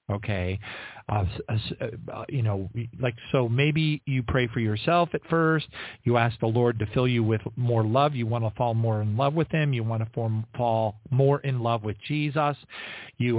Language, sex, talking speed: English, male, 200 wpm